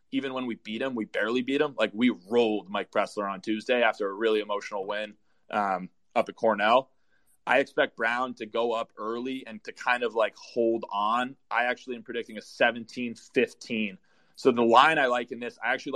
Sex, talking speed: male, 205 wpm